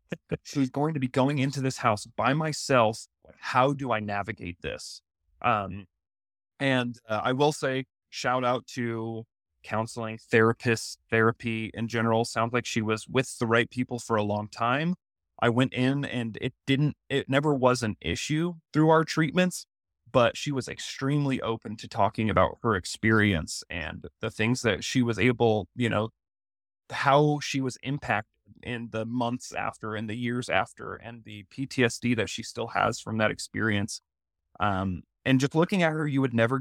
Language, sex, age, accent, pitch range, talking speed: English, male, 30-49, American, 110-135 Hz, 170 wpm